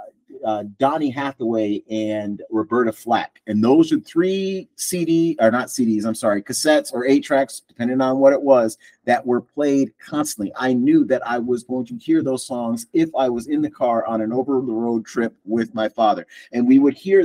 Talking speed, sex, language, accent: 200 wpm, male, English, American